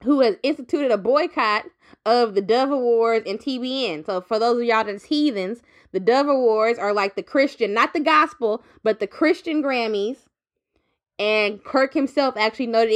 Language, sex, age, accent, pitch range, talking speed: English, female, 20-39, American, 205-245 Hz, 170 wpm